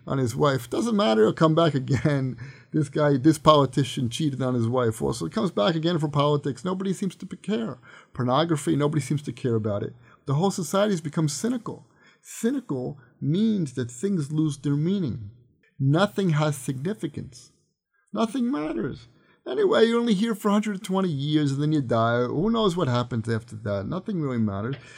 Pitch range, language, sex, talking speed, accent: 125-185 Hz, English, male, 175 wpm, American